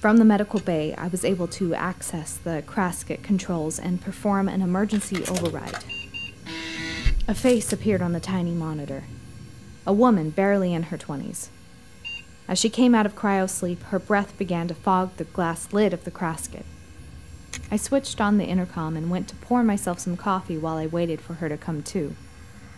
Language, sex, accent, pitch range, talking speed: English, female, American, 155-205 Hz, 175 wpm